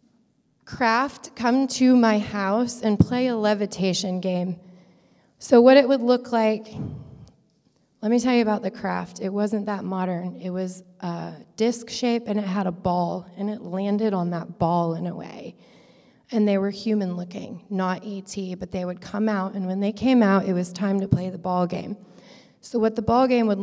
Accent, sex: American, female